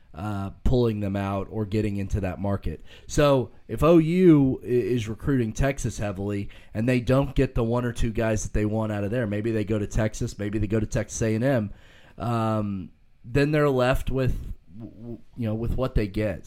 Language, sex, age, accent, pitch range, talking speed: English, male, 30-49, American, 110-140 Hz, 195 wpm